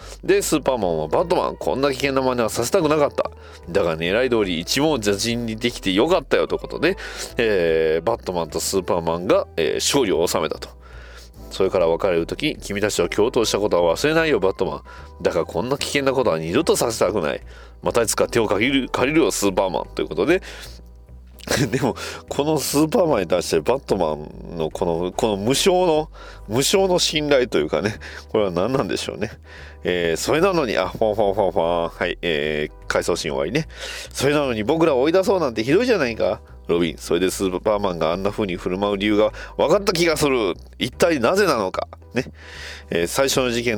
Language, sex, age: Japanese, male, 40-59